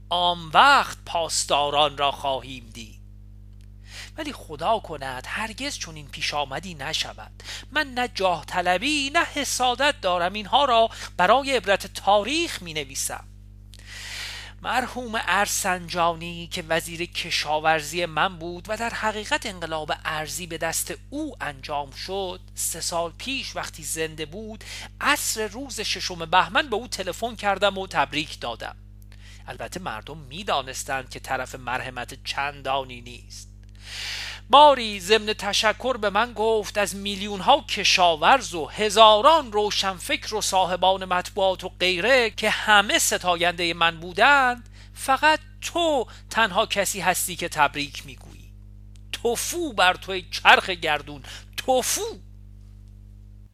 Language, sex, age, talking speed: Persian, male, 40-59, 120 wpm